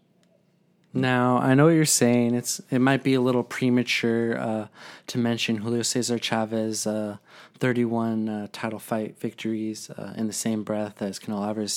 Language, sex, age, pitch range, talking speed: English, male, 20-39, 105-125 Hz, 165 wpm